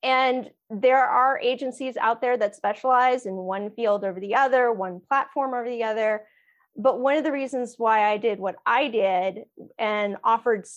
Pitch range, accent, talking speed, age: 210-260 Hz, American, 180 wpm, 20-39